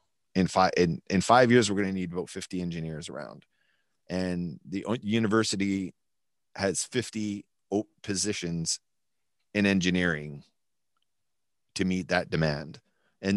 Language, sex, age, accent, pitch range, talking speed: English, male, 30-49, American, 85-105 Hz, 120 wpm